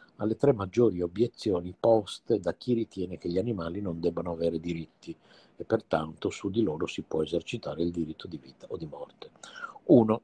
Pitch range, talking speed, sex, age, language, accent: 85-105 Hz, 180 wpm, male, 50-69, Italian, native